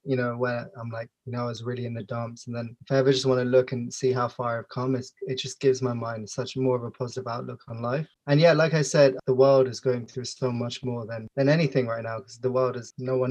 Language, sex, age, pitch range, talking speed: English, male, 20-39, 125-135 Hz, 300 wpm